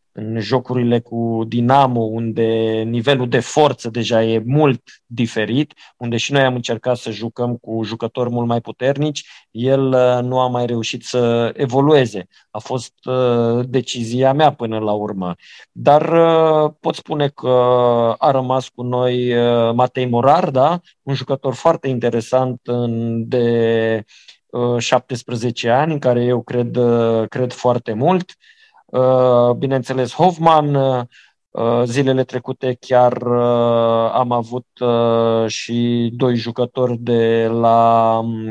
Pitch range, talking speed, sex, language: 120-150 Hz, 110 wpm, male, Romanian